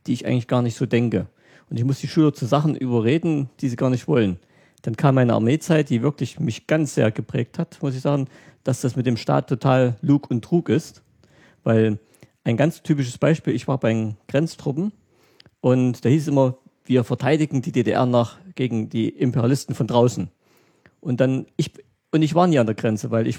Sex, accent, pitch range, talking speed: male, German, 120-150 Hz, 210 wpm